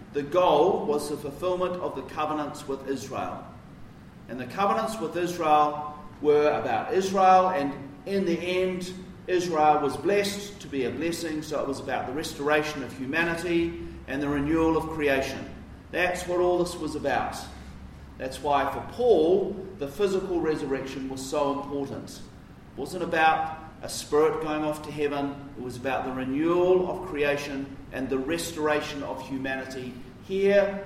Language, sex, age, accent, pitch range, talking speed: English, male, 40-59, Australian, 135-175 Hz, 155 wpm